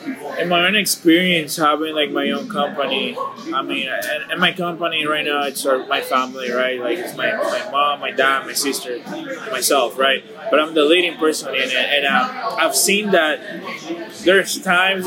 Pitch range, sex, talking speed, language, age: 150-185 Hz, male, 180 wpm, English, 20-39